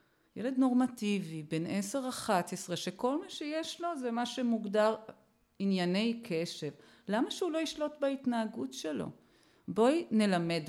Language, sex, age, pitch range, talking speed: Hebrew, female, 40-59, 165-230 Hz, 125 wpm